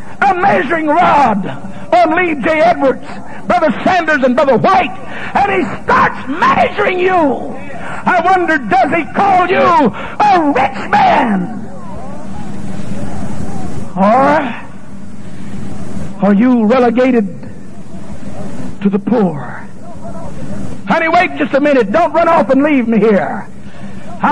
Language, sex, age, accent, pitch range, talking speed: English, male, 60-79, American, 240-360 Hz, 110 wpm